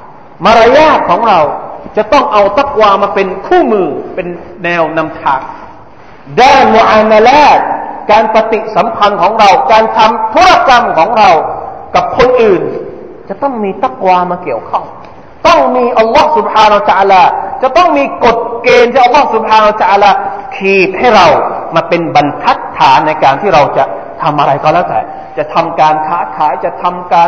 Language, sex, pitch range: Thai, male, 175-280 Hz